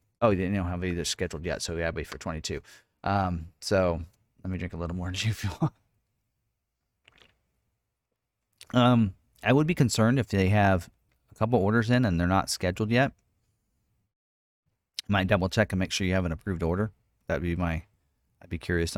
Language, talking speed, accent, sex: English, 190 wpm, American, male